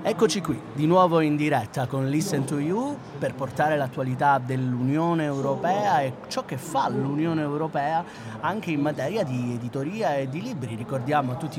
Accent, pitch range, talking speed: native, 135-175 Hz, 165 wpm